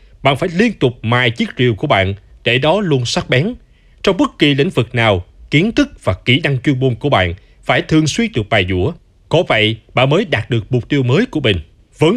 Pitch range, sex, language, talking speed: 115-160 Hz, male, Vietnamese, 230 wpm